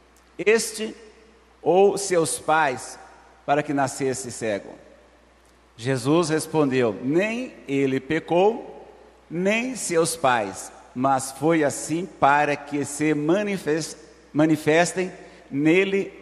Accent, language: Brazilian, Portuguese